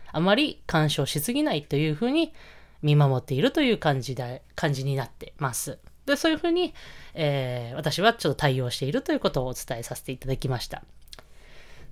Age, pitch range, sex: 20-39, 145-225 Hz, female